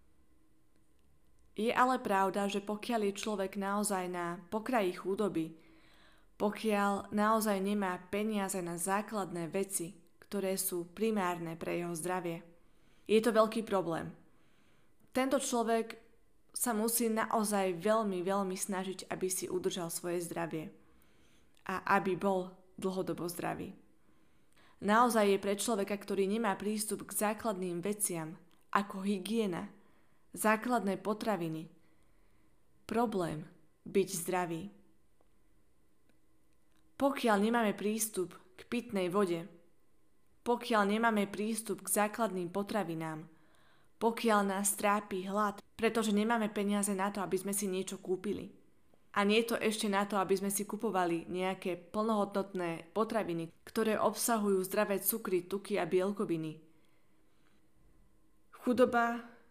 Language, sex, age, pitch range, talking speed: Slovak, female, 20-39, 180-215 Hz, 110 wpm